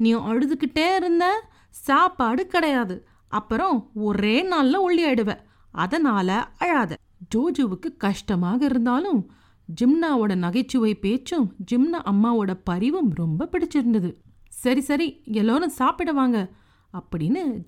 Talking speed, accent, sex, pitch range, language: 50 wpm, native, female, 195-285 Hz, Tamil